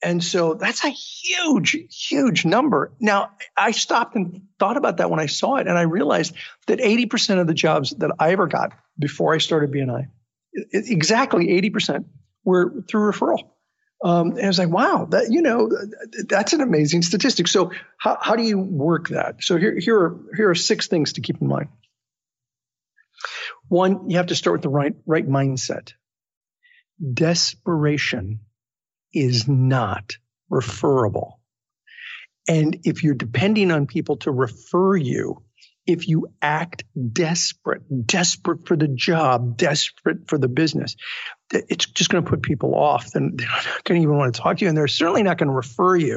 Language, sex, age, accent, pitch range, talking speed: English, male, 50-69, American, 140-190 Hz, 175 wpm